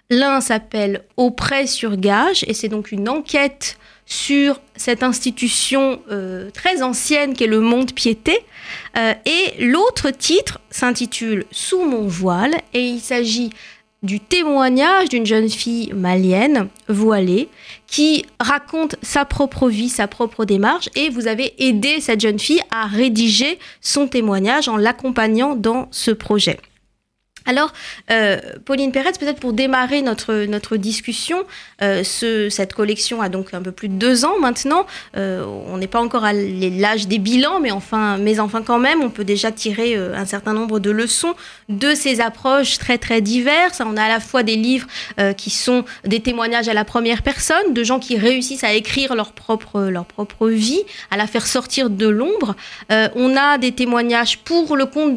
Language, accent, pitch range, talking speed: French, French, 215-270 Hz, 175 wpm